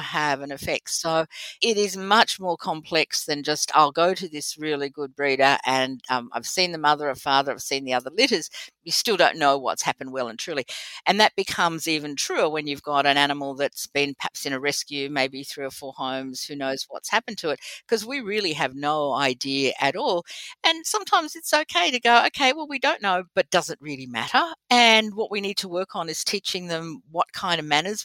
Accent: Australian